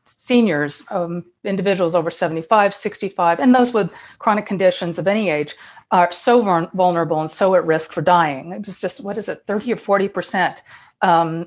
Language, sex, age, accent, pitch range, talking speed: English, female, 40-59, American, 175-210 Hz, 175 wpm